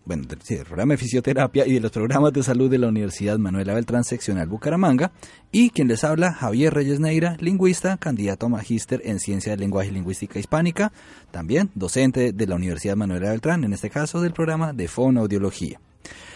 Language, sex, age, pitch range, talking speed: Spanish, male, 30-49, 110-155 Hz, 185 wpm